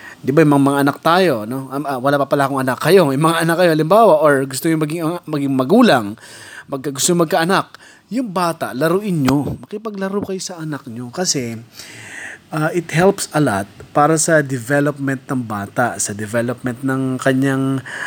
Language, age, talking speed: Filipino, 20-39, 185 wpm